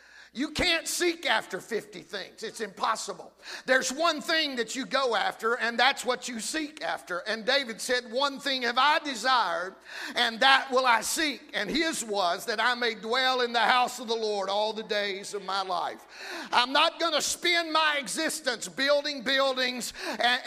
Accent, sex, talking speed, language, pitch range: American, male, 180 wpm, English, 185-270 Hz